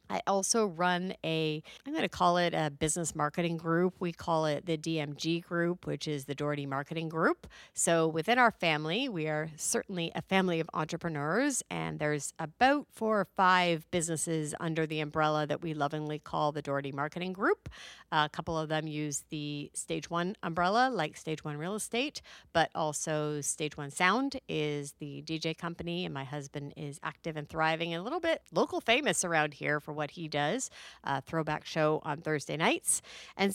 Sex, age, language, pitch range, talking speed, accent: female, 50-69, English, 155-205 Hz, 185 wpm, American